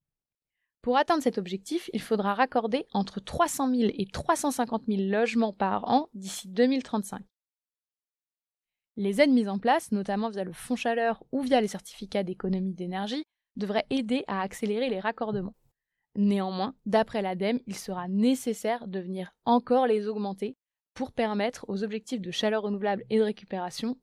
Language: French